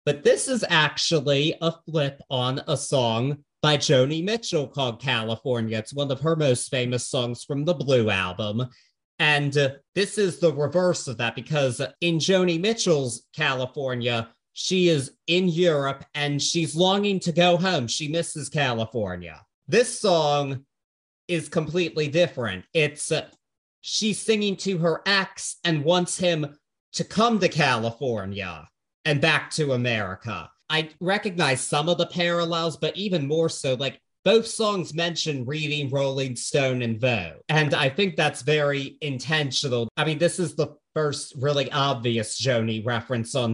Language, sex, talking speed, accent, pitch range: English, male, 150 wpm, American, 125-170 Hz